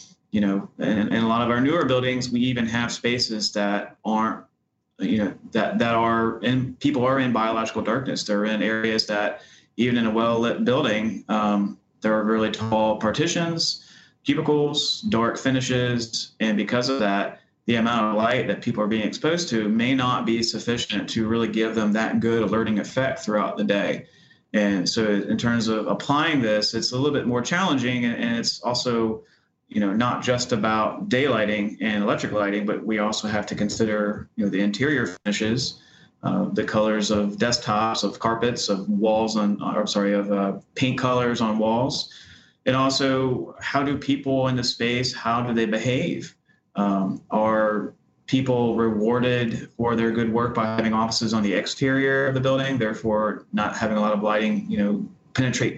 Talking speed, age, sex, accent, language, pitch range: 180 wpm, 30-49, male, American, English, 110-125 Hz